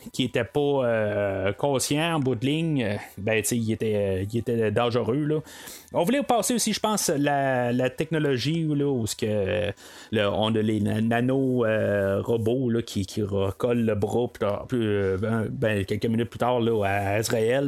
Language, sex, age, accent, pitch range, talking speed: French, male, 30-49, Canadian, 110-155 Hz, 175 wpm